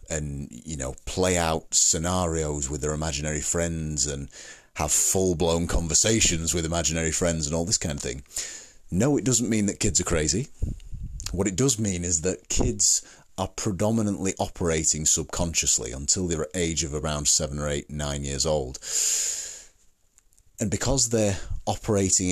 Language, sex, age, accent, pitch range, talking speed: English, male, 30-49, British, 75-100 Hz, 160 wpm